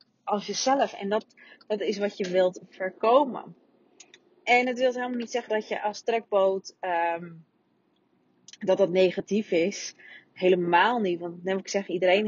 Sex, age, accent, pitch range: female, 30-49, Dutch, 190-230 Hz